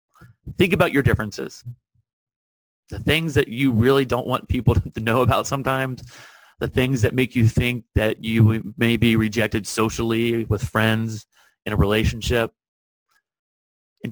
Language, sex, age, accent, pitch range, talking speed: English, male, 30-49, American, 110-135 Hz, 145 wpm